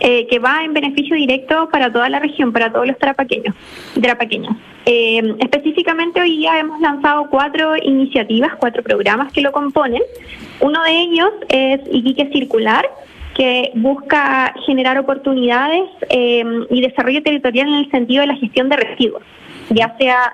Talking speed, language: 150 wpm, Spanish